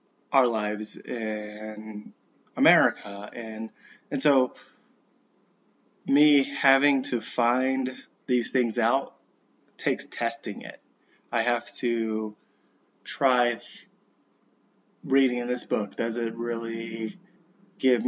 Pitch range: 115-145 Hz